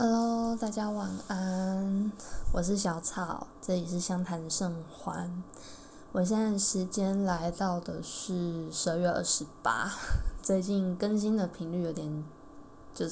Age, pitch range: 10-29, 165-220 Hz